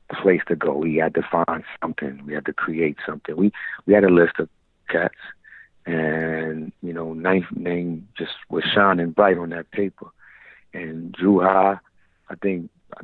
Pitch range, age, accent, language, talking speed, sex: 85-100 Hz, 50-69, American, English, 175 wpm, male